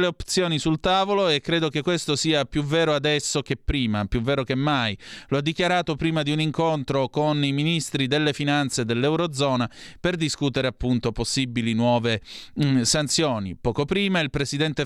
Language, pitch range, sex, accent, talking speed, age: Italian, 125-160 Hz, male, native, 170 wpm, 30-49